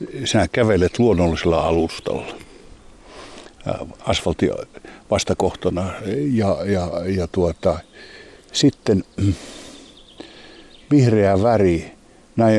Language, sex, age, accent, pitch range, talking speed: Finnish, male, 60-79, native, 90-105 Hz, 65 wpm